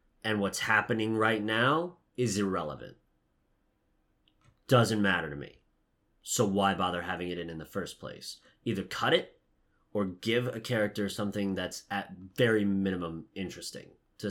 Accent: American